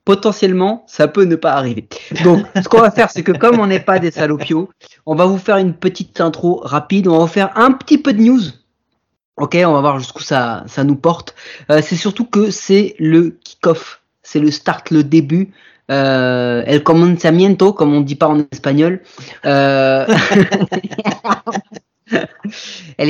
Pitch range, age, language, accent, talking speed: 145-185 Hz, 30-49, French, French, 175 wpm